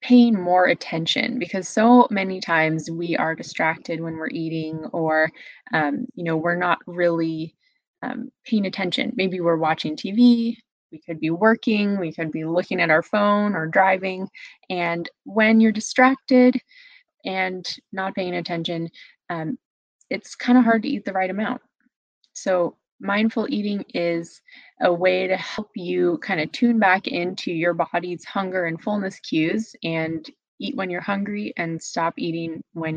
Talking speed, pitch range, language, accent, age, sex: 160 wpm, 170-240 Hz, English, American, 20-39, female